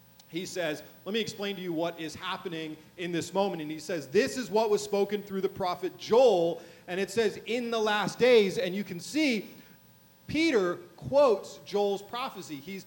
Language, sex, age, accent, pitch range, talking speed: English, male, 30-49, American, 160-210 Hz, 190 wpm